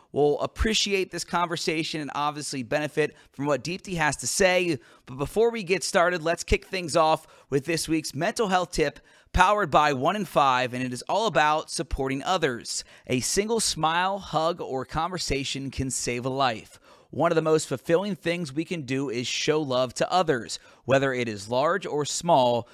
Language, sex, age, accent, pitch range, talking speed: English, male, 30-49, American, 130-170 Hz, 185 wpm